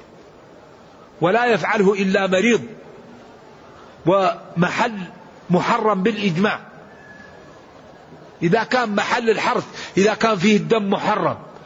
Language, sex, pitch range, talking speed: Arabic, male, 180-220 Hz, 80 wpm